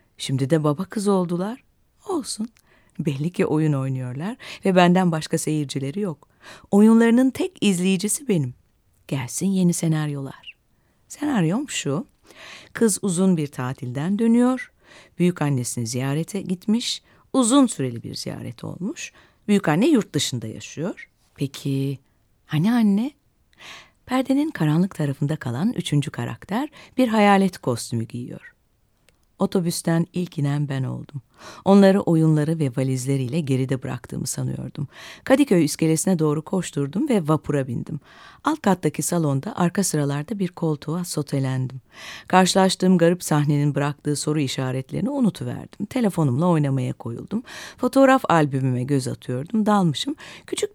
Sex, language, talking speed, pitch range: female, Turkish, 115 wpm, 140-205 Hz